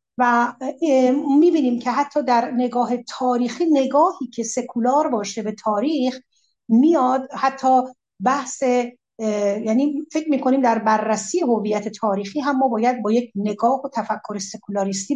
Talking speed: 125 wpm